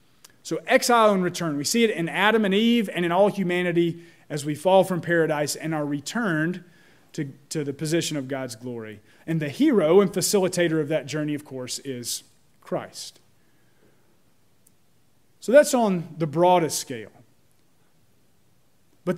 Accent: American